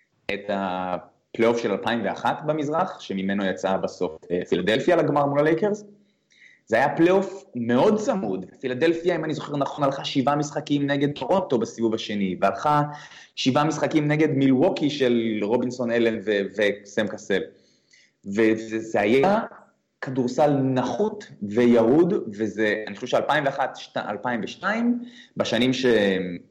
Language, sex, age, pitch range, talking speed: Hebrew, male, 20-39, 100-155 Hz, 120 wpm